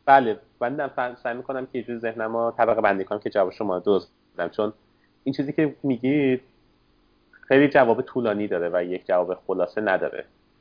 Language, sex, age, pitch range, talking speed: Persian, male, 30-49, 100-140 Hz, 170 wpm